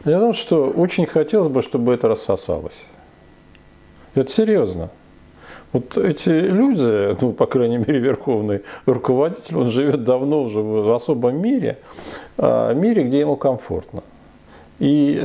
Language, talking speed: Russian, 125 wpm